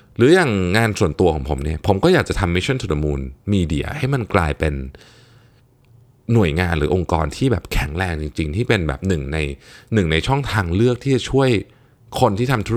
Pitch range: 85-130 Hz